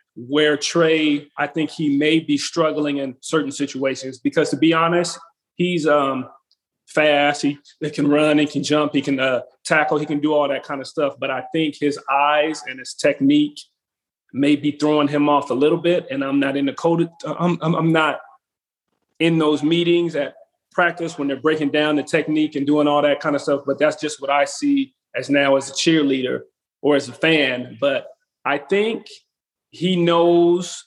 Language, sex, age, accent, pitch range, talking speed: English, male, 30-49, American, 140-160 Hz, 195 wpm